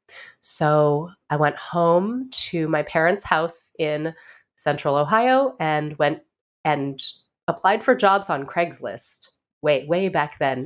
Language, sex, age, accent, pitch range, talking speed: English, female, 30-49, American, 145-190 Hz, 130 wpm